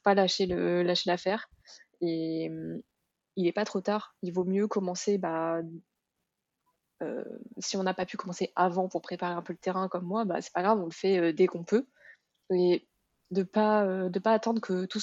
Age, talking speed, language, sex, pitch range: 20-39, 200 wpm, French, female, 180-210 Hz